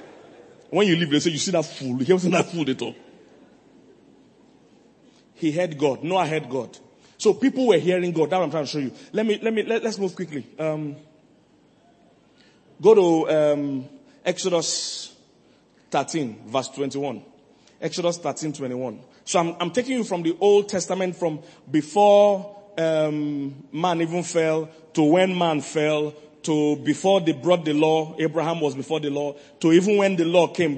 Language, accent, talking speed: English, Nigerian, 175 wpm